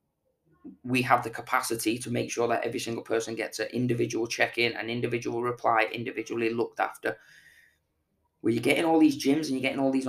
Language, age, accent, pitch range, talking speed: English, 20-39, British, 120-135 Hz, 200 wpm